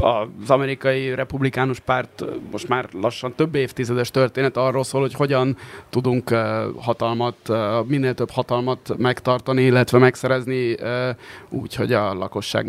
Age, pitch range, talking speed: 30-49, 115-135 Hz, 120 wpm